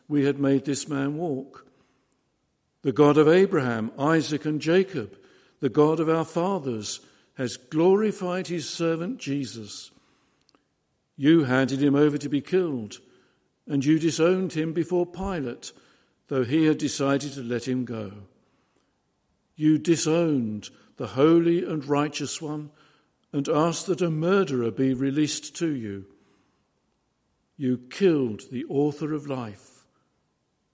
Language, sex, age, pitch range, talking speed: English, male, 60-79, 130-160 Hz, 130 wpm